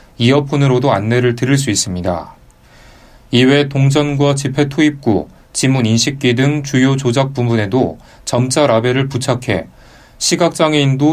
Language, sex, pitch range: Korean, male, 115-145 Hz